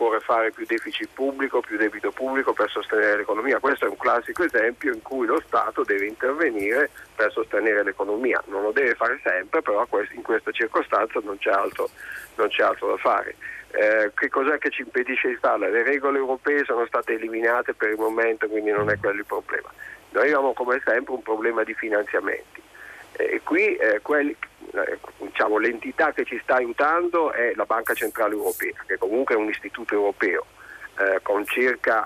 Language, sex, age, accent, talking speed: Italian, male, 50-69, native, 180 wpm